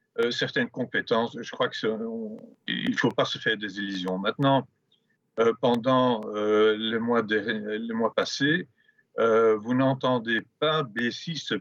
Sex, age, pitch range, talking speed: male, 50-69, 110-145 Hz, 150 wpm